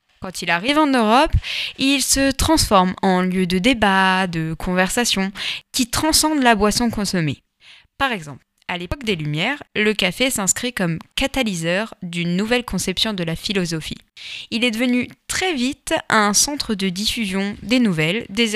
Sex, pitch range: female, 180-245 Hz